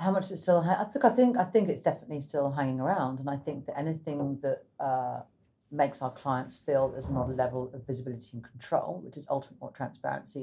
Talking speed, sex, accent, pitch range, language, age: 230 wpm, female, British, 125-145 Hz, English, 40-59